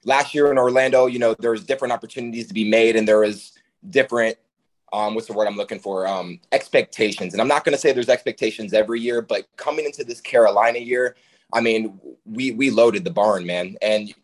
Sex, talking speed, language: male, 210 wpm, English